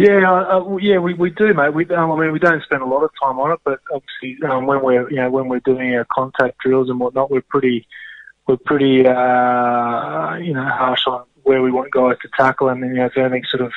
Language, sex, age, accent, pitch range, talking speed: English, male, 20-39, Australian, 125-135 Hz, 255 wpm